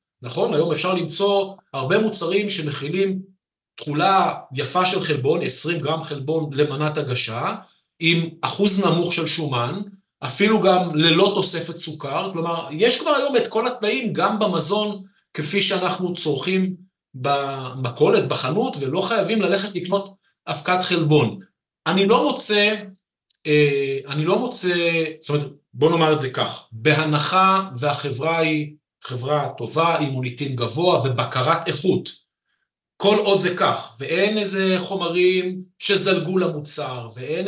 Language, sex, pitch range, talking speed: Hebrew, male, 150-195 Hz, 125 wpm